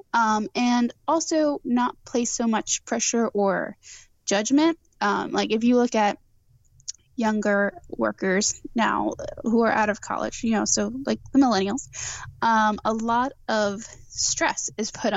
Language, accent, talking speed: English, American, 145 wpm